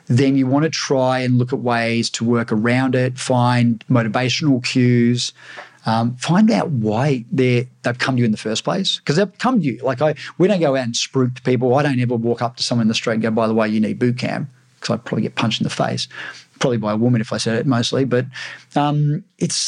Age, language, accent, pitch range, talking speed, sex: 40-59, English, Australian, 120-145 Hz, 250 wpm, male